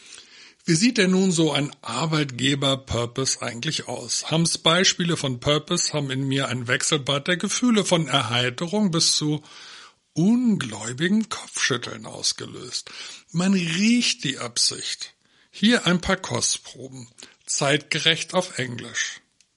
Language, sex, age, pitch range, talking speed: German, male, 60-79, 125-170 Hz, 115 wpm